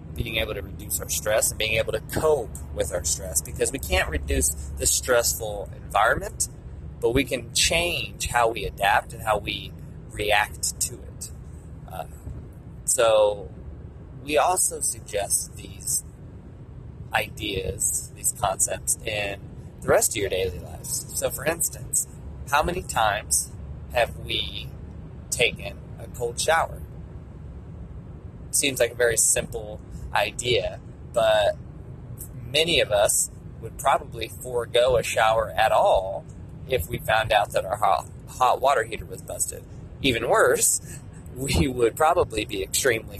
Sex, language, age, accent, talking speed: male, English, 30-49, American, 135 wpm